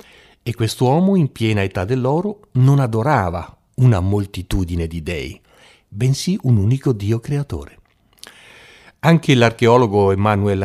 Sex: male